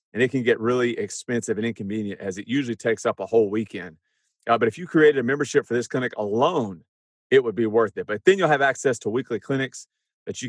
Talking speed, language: 240 wpm, English